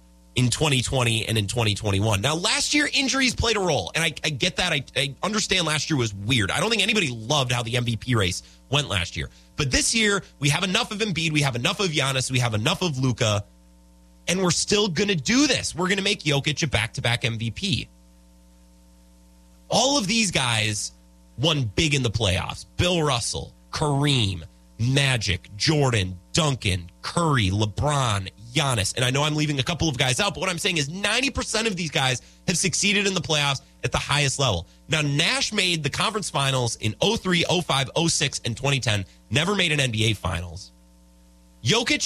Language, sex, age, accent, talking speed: English, male, 30-49, American, 190 wpm